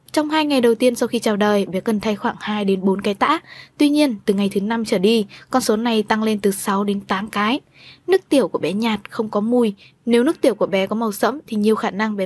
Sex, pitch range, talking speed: female, 210-250 Hz, 280 wpm